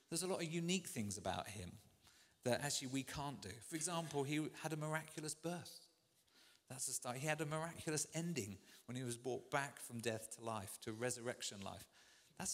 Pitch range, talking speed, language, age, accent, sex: 110-145 Hz, 195 wpm, English, 40-59, British, male